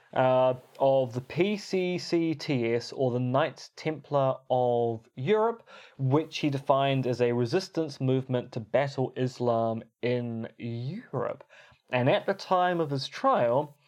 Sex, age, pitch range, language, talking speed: male, 20-39, 120-155 Hz, English, 125 wpm